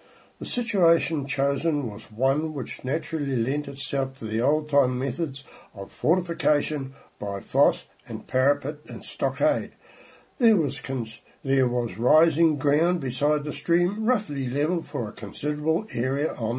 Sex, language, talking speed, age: male, English, 135 wpm, 60-79